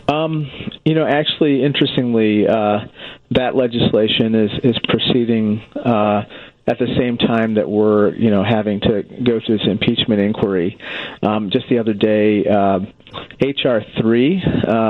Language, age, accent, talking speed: English, 40-59, American, 140 wpm